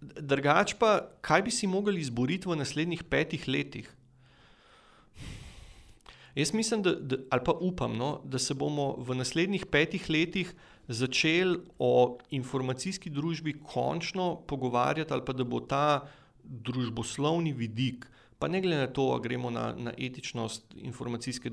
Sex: male